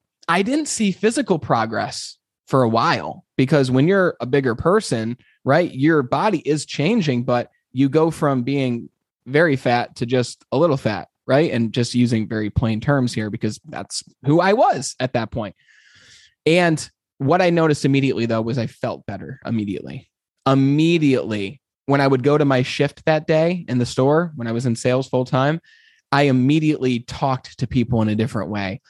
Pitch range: 120-155 Hz